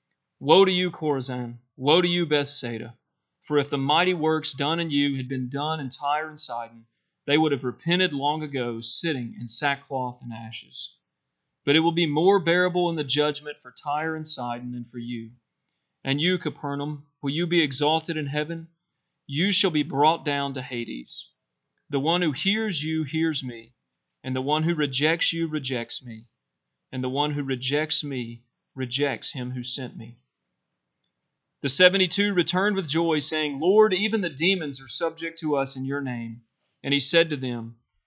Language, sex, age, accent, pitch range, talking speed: English, male, 40-59, American, 125-160 Hz, 180 wpm